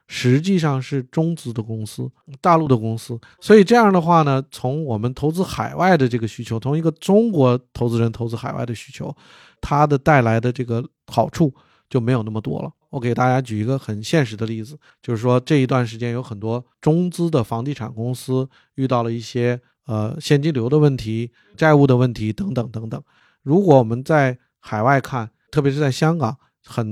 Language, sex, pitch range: Chinese, male, 120-155 Hz